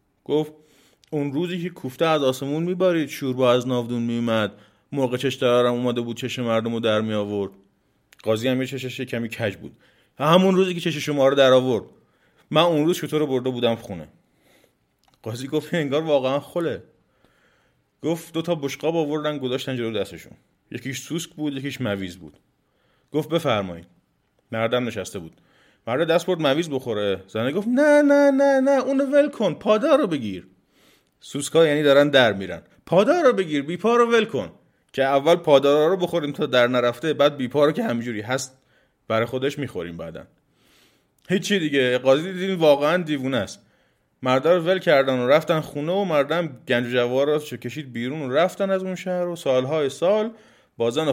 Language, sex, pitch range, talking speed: Persian, male, 120-165 Hz, 175 wpm